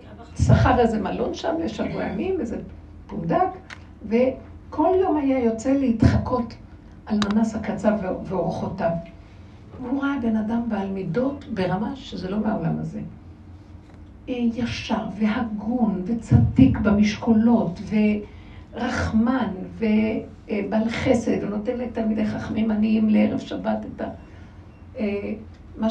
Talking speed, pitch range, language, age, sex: 100 wpm, 185-240 Hz, Hebrew, 60-79, female